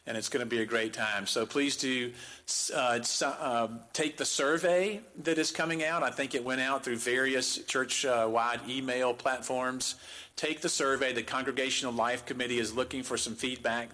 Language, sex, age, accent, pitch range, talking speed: English, male, 50-69, American, 115-140 Hz, 180 wpm